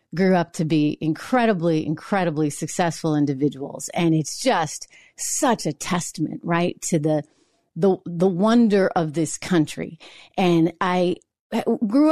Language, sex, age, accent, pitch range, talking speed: English, female, 30-49, American, 170-265 Hz, 130 wpm